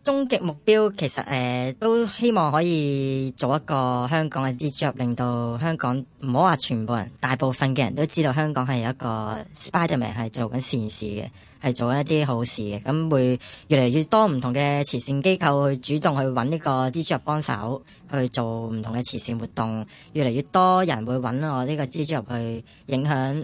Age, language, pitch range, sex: 20-39, Chinese, 120-150 Hz, male